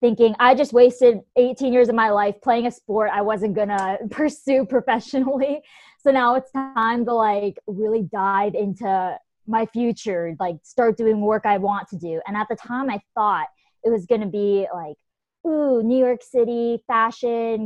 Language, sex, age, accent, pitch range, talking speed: English, female, 20-39, American, 200-240 Hz, 185 wpm